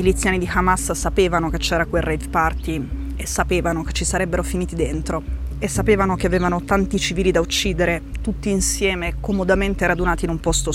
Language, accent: Italian, native